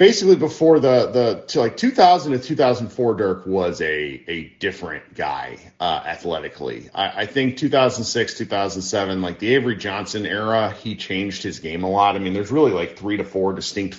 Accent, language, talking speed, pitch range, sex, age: American, English, 180 wpm, 100-145 Hz, male, 40-59